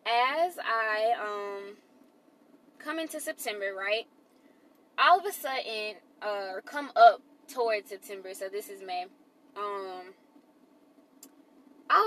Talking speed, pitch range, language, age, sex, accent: 110 wpm, 215-300 Hz, English, 10-29, female, American